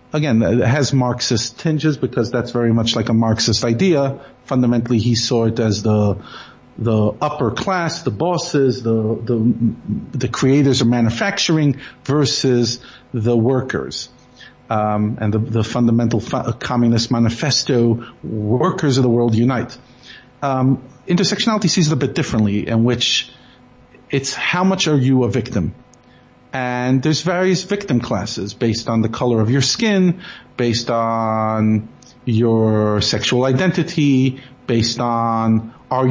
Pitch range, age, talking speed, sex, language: 115-140 Hz, 50-69, 135 wpm, male, English